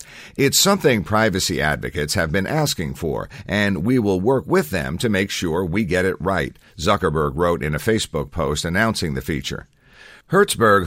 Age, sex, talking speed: 50-69, male, 170 wpm